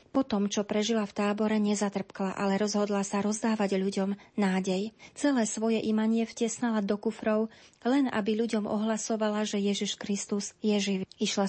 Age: 30-49